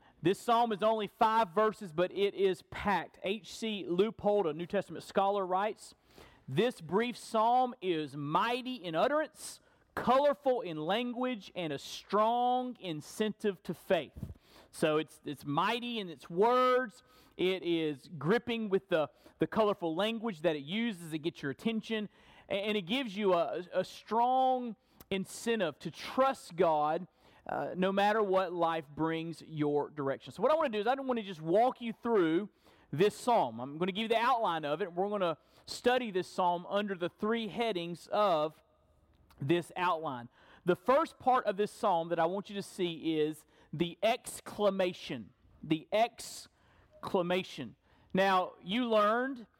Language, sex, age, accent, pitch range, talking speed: English, male, 40-59, American, 170-225 Hz, 160 wpm